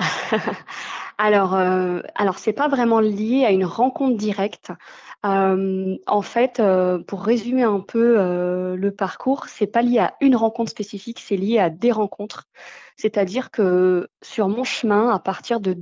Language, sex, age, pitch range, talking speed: French, female, 20-39, 185-220 Hz, 160 wpm